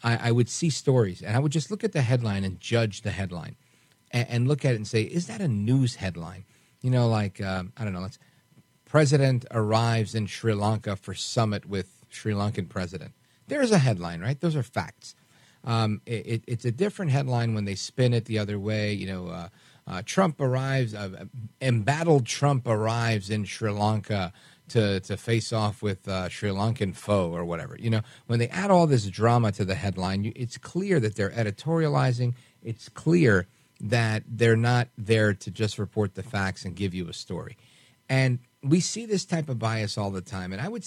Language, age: English, 40-59